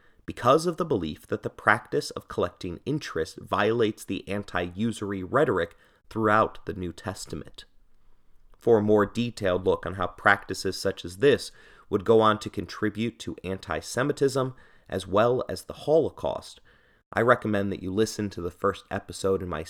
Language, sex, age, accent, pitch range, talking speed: English, male, 30-49, American, 95-115 Hz, 160 wpm